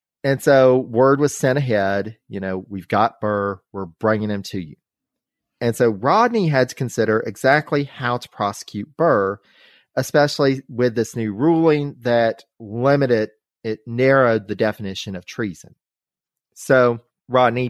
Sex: male